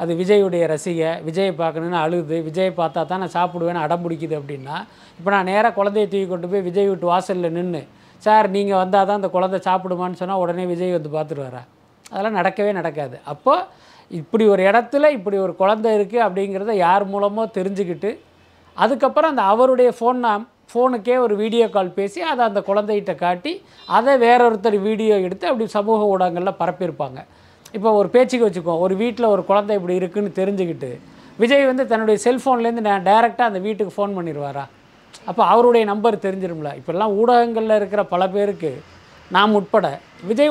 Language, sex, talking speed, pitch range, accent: Tamil, male, 160 wpm, 180-225 Hz, native